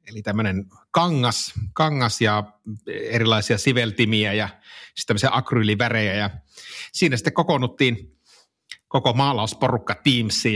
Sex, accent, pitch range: male, native, 105-130 Hz